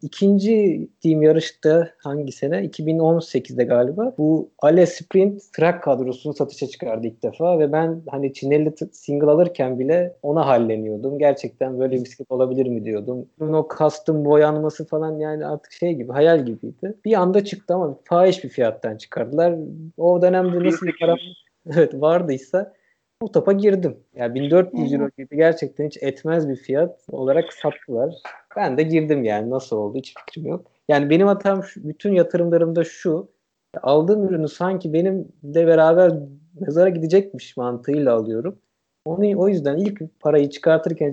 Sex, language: male, Turkish